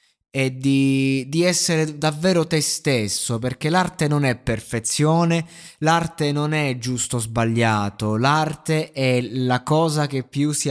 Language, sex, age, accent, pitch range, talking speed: Italian, male, 20-39, native, 120-150 Hz, 140 wpm